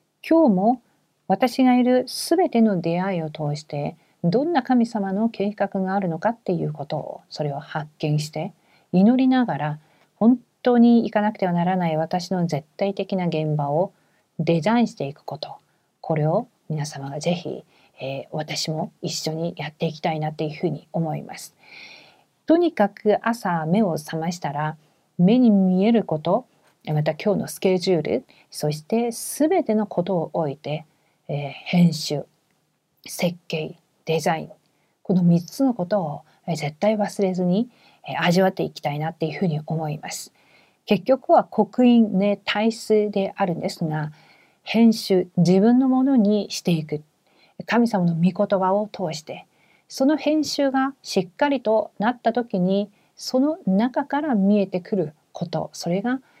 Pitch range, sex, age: 160-220 Hz, female, 40-59